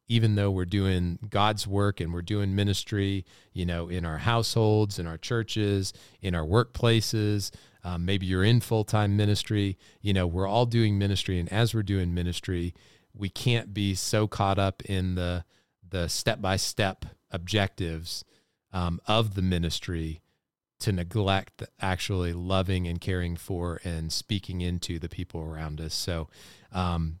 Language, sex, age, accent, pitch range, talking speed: English, male, 30-49, American, 90-105 Hz, 150 wpm